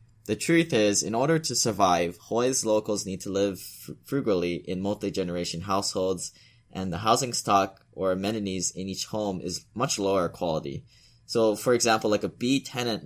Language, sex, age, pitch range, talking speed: English, male, 10-29, 90-115 Hz, 160 wpm